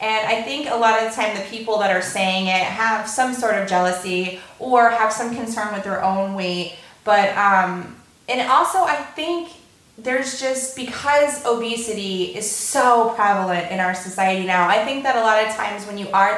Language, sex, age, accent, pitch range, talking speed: English, female, 20-39, American, 180-220 Hz, 200 wpm